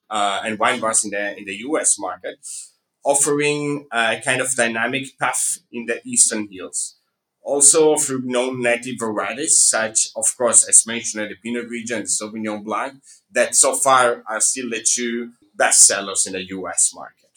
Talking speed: 175 wpm